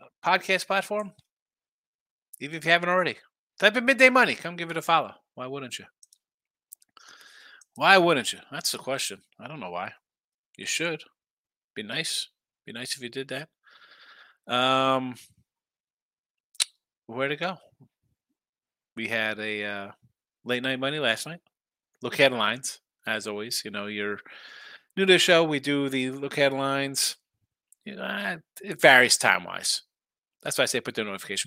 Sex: male